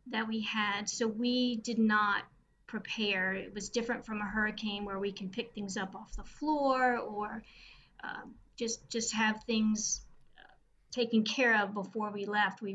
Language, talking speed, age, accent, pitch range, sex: English, 170 wpm, 40-59, American, 210-230 Hz, female